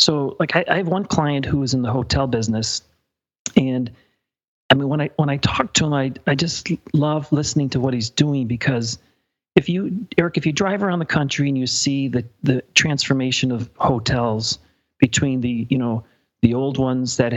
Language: English